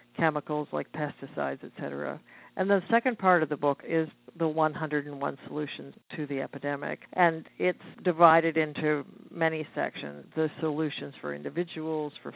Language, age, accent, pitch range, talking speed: English, 50-69, American, 150-170 Hz, 145 wpm